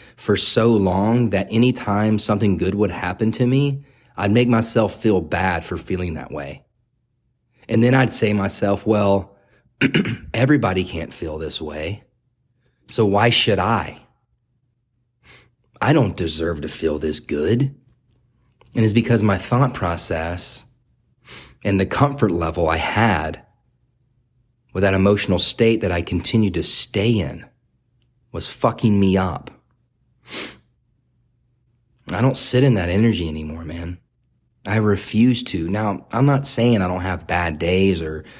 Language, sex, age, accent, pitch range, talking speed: English, male, 30-49, American, 100-125 Hz, 140 wpm